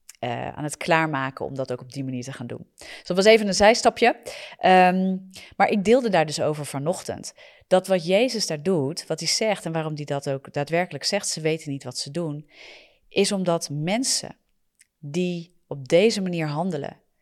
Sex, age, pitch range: female, 40-59, 150-190 Hz